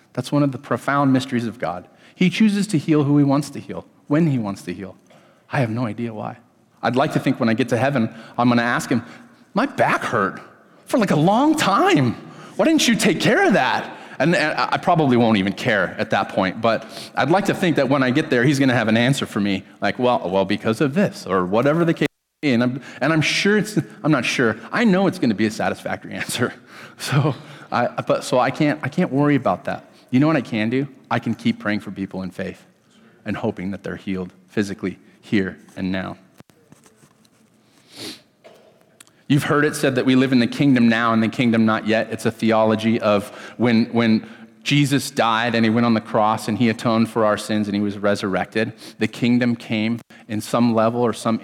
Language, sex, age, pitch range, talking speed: English, male, 30-49, 105-135 Hz, 230 wpm